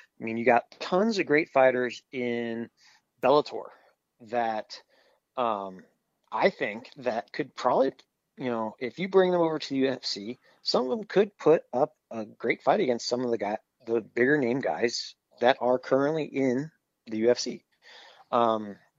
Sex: male